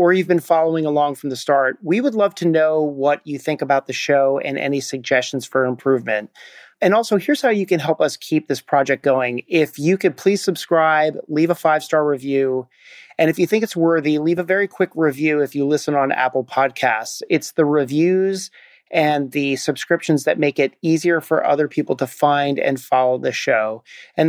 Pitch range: 135-165 Hz